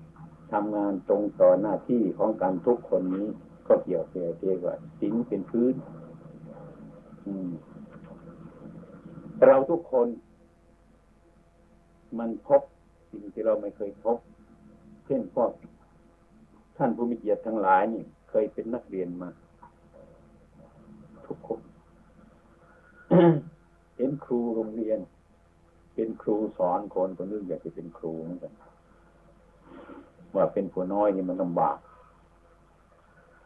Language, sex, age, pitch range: Thai, male, 60-79, 85-120 Hz